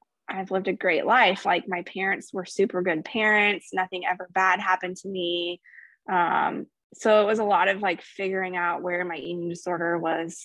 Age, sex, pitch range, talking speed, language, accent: 20-39, female, 180-215 Hz, 190 wpm, English, American